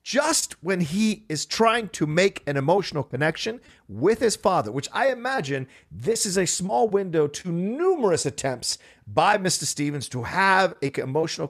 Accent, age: American, 50-69